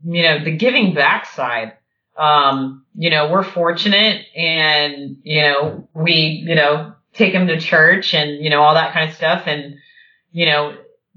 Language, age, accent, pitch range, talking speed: English, 30-49, American, 150-180 Hz, 170 wpm